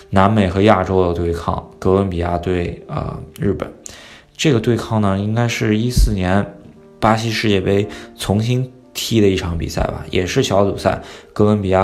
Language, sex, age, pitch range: Chinese, male, 20-39, 90-105 Hz